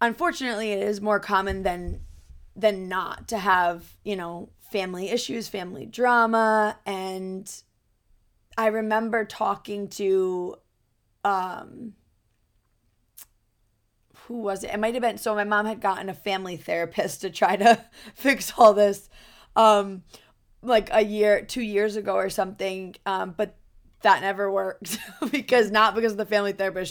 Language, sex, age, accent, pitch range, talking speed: English, female, 20-39, American, 165-215 Hz, 140 wpm